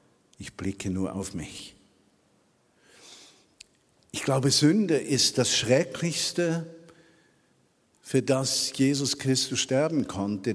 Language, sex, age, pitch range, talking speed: German, male, 50-69, 100-130 Hz, 95 wpm